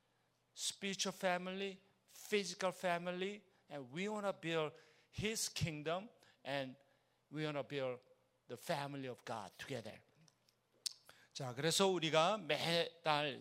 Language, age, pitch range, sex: Korean, 50-69, 135-185 Hz, male